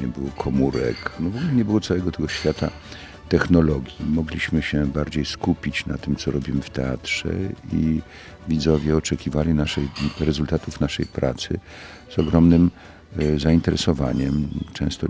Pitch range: 75-90 Hz